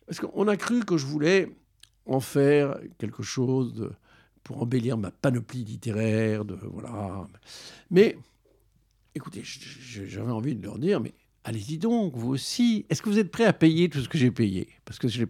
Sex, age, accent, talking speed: male, 60-79, French, 180 wpm